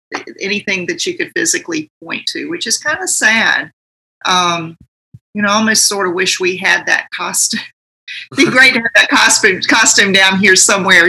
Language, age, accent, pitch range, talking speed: English, 40-59, American, 165-230 Hz, 190 wpm